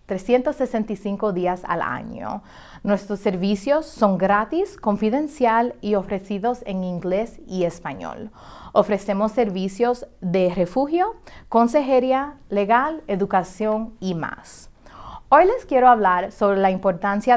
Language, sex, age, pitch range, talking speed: English, female, 30-49, 185-240 Hz, 105 wpm